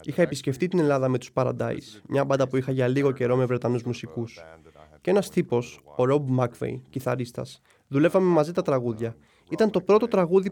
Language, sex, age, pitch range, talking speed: Greek, male, 20-39, 125-155 Hz, 185 wpm